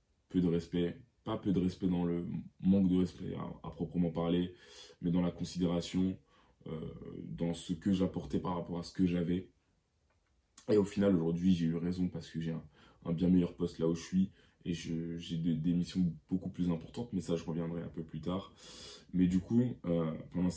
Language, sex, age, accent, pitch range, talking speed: French, male, 20-39, French, 85-95 Hz, 210 wpm